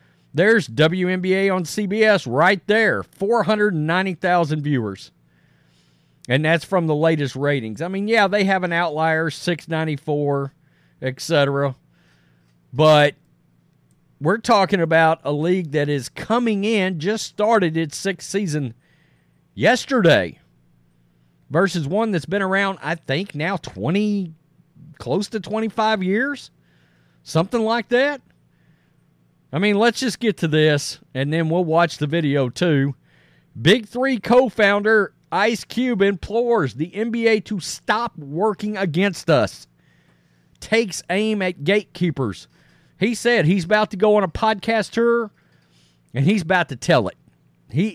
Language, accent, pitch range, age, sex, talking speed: English, American, 135-200 Hz, 40-59, male, 130 wpm